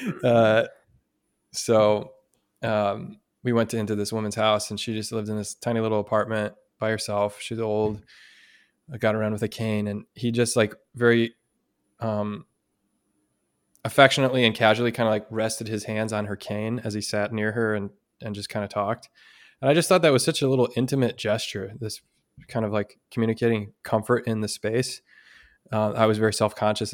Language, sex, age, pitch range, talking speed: English, male, 20-39, 105-120 Hz, 180 wpm